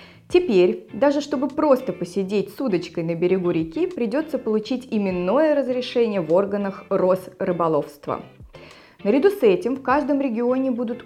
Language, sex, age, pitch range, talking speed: Russian, female, 20-39, 175-245 Hz, 130 wpm